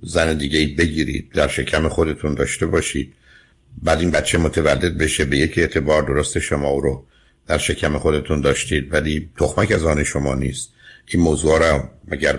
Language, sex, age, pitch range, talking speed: Persian, male, 60-79, 75-85 Hz, 165 wpm